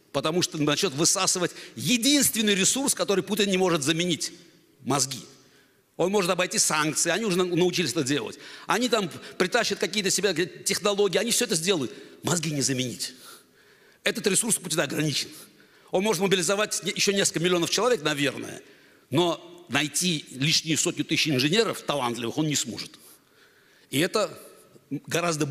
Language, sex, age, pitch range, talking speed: Russian, male, 60-79, 155-210 Hz, 140 wpm